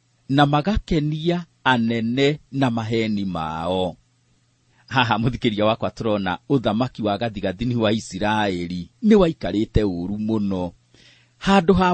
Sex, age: male, 40-59